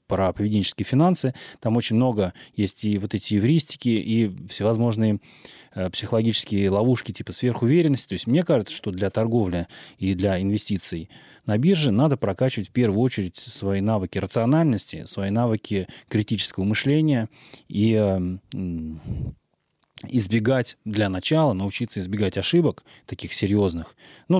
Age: 20-39